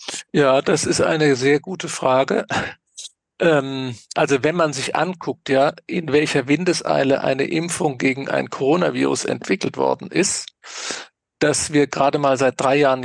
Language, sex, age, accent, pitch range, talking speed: German, male, 40-59, German, 125-150 Hz, 145 wpm